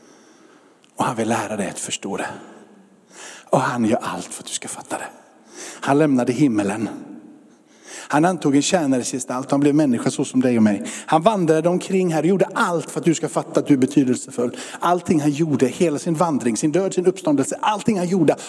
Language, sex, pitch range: Swedish, male, 145-205 Hz